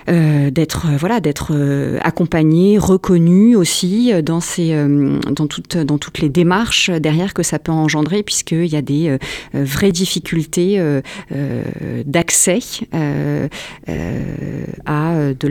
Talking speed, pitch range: 110 wpm, 140-170 Hz